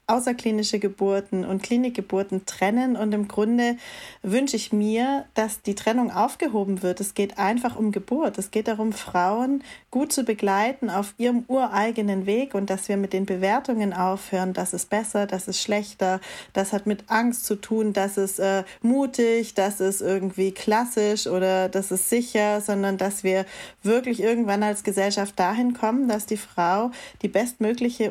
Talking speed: 165 wpm